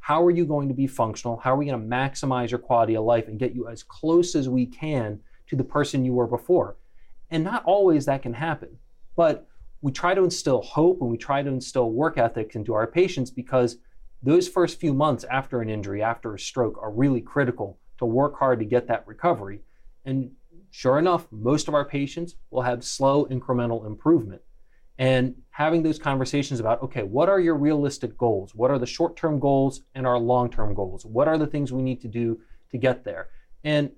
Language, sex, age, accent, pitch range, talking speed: English, male, 30-49, American, 120-145 Hz, 205 wpm